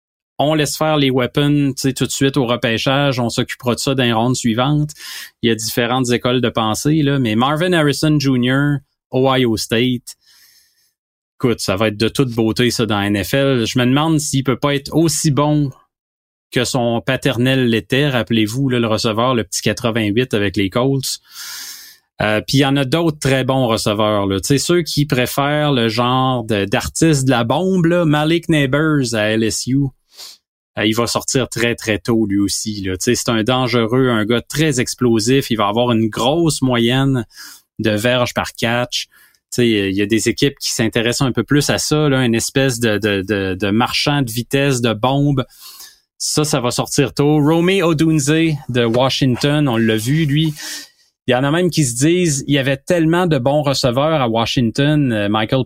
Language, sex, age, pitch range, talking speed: French, male, 30-49, 115-145 Hz, 175 wpm